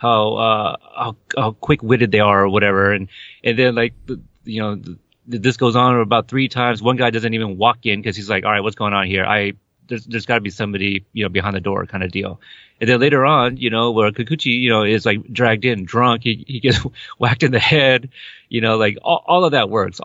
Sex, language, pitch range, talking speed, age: male, English, 100-125 Hz, 250 wpm, 30-49